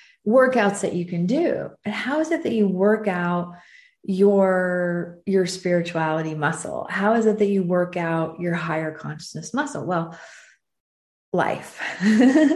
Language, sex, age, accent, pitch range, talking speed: English, female, 30-49, American, 170-210 Hz, 145 wpm